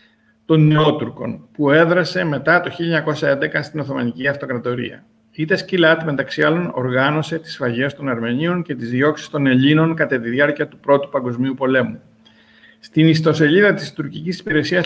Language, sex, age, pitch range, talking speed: Greek, male, 50-69, 135-175 Hz, 145 wpm